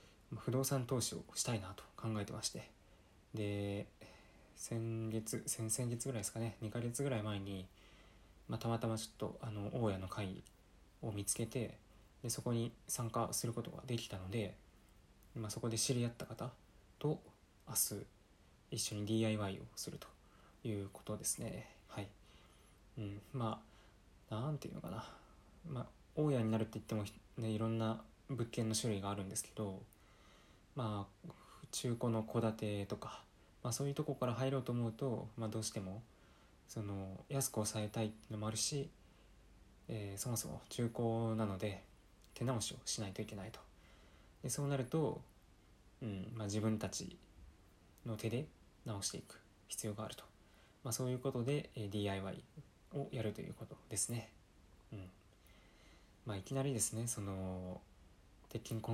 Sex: male